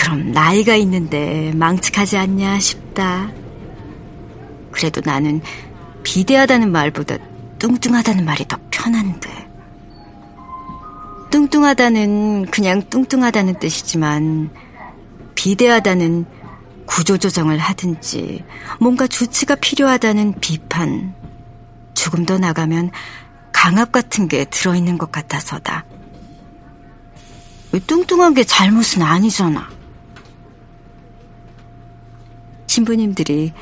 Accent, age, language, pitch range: native, 40-59, Korean, 155-215 Hz